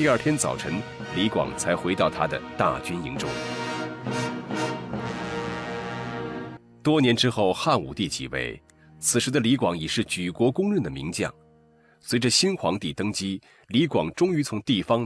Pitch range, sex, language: 80-125 Hz, male, Chinese